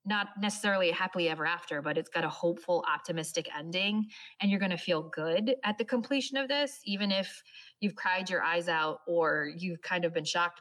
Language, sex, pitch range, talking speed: English, female, 165-195 Hz, 210 wpm